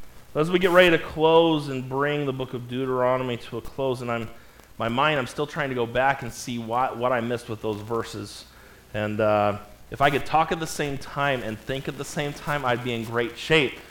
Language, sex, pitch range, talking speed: English, male, 115-145 Hz, 235 wpm